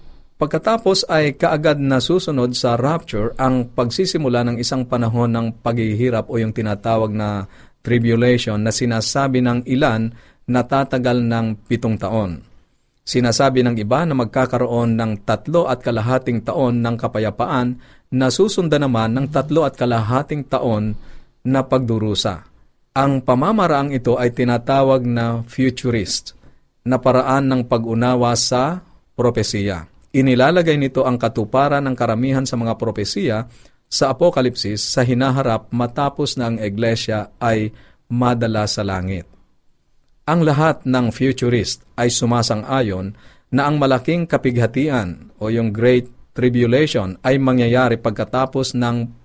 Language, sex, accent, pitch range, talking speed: Filipino, male, native, 115-130 Hz, 125 wpm